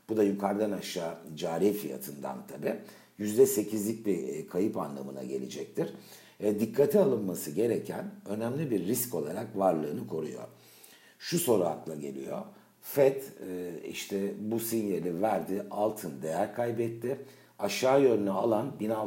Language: Turkish